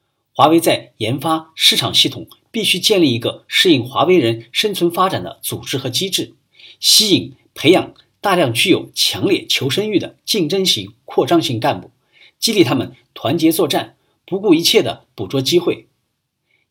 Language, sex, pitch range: Chinese, male, 125-190 Hz